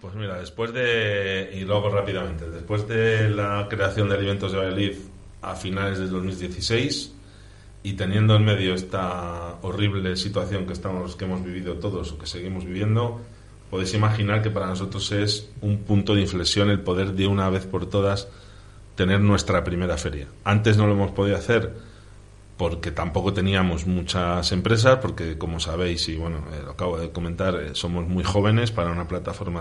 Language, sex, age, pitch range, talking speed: Spanish, male, 40-59, 90-105 Hz, 170 wpm